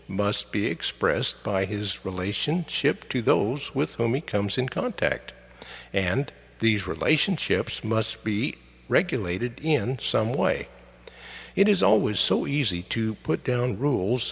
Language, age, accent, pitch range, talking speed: English, 60-79, American, 95-135 Hz, 135 wpm